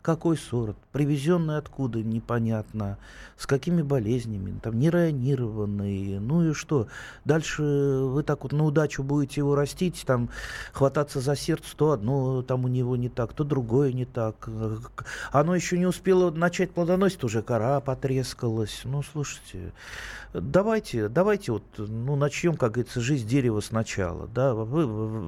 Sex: male